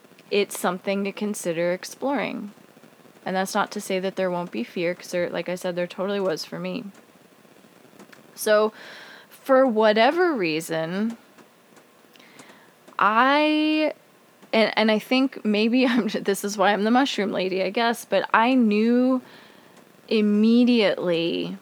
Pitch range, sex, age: 175-215 Hz, female, 20-39